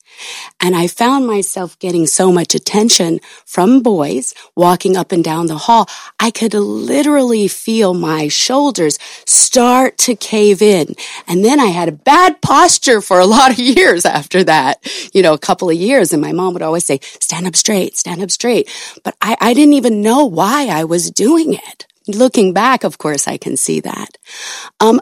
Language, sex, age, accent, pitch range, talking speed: English, female, 30-49, American, 165-230 Hz, 185 wpm